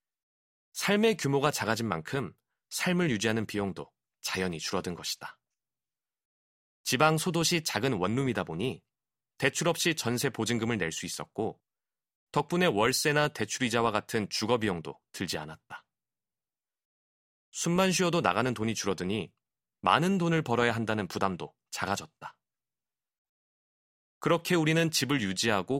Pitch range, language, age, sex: 95-160 Hz, Korean, 30-49, male